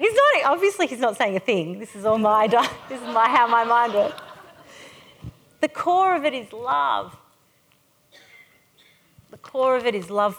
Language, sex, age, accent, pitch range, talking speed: English, female, 40-59, Australian, 175-240 Hz, 180 wpm